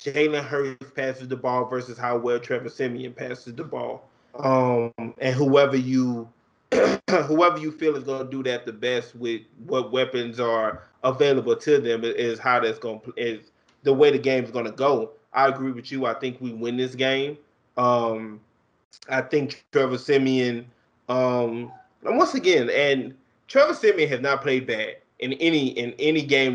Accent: American